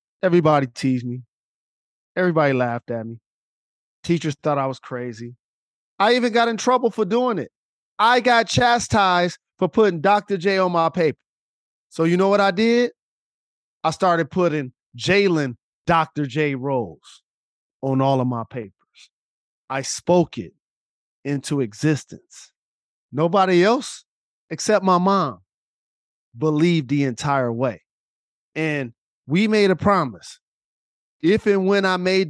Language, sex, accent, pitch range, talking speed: English, male, American, 140-205 Hz, 135 wpm